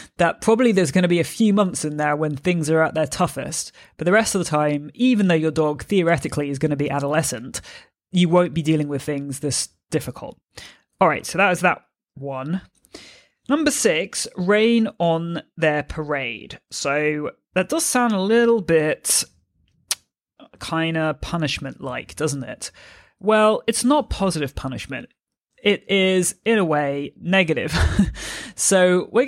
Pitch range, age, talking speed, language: 150-190 Hz, 30-49, 165 wpm, English